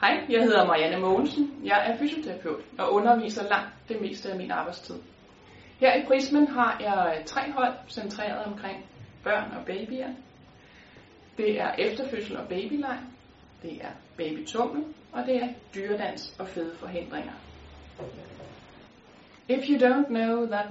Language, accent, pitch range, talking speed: Danish, native, 190-255 Hz, 140 wpm